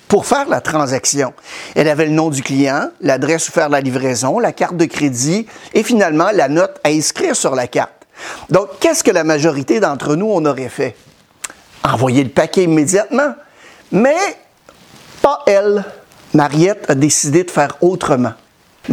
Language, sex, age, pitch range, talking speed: French, male, 50-69, 155-220 Hz, 165 wpm